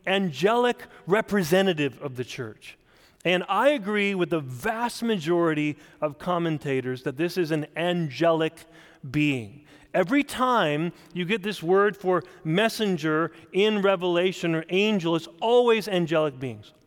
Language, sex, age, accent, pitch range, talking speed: English, male, 40-59, American, 165-220 Hz, 130 wpm